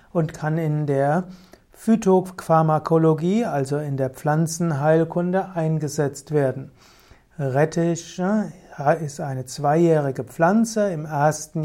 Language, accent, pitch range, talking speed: German, German, 145-170 Hz, 95 wpm